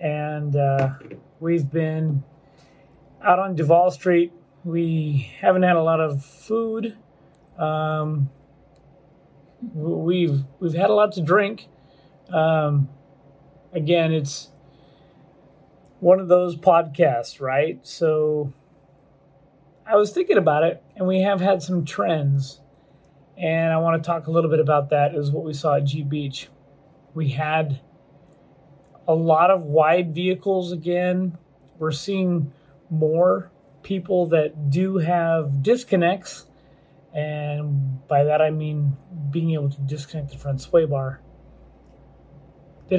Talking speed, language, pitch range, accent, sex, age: 125 wpm, English, 140-170 Hz, American, male, 30-49